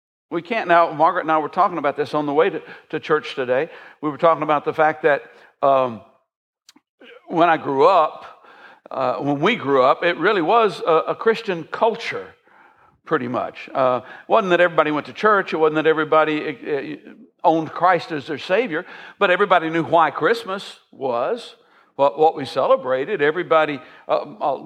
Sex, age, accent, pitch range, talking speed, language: male, 60-79, American, 155-185 Hz, 170 wpm, English